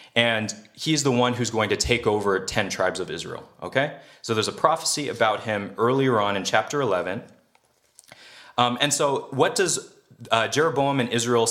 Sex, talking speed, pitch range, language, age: male, 175 wpm, 110-140 Hz, English, 30-49